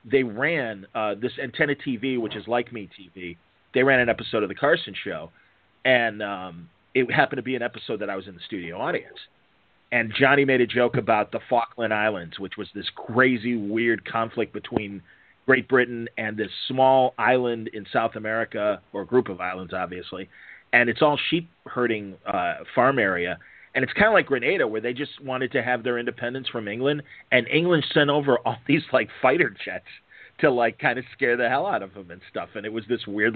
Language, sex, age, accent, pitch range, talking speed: English, male, 40-59, American, 105-130 Hz, 205 wpm